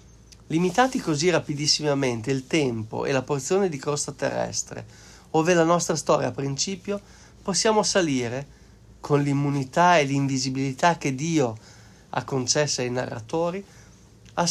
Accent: native